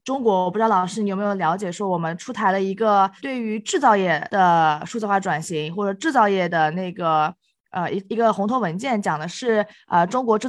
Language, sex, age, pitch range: Chinese, female, 20-39, 180-225 Hz